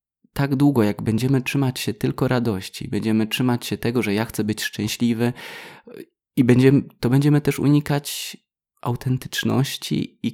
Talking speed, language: 145 wpm, Polish